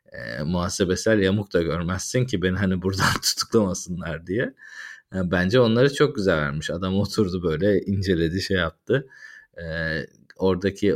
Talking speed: 135 wpm